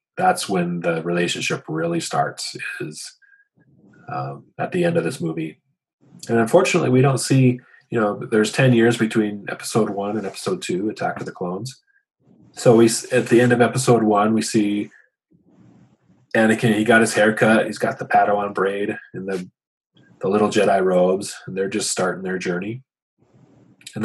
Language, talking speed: English, 165 wpm